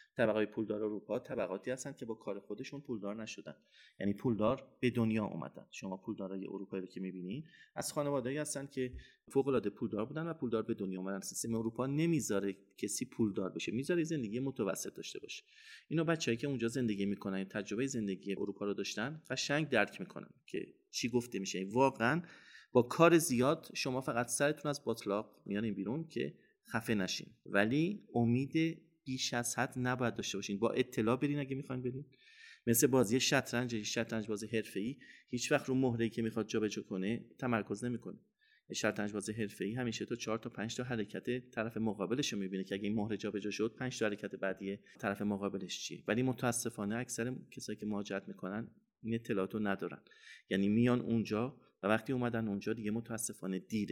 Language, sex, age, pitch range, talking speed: Persian, male, 30-49, 105-130 Hz, 175 wpm